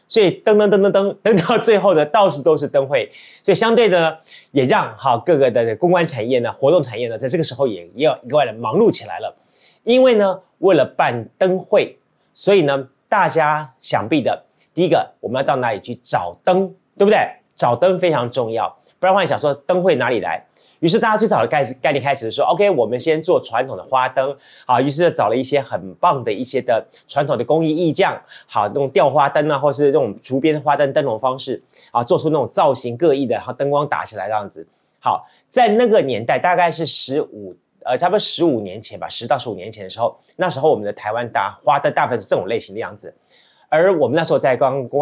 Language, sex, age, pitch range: Chinese, male, 30-49, 135-190 Hz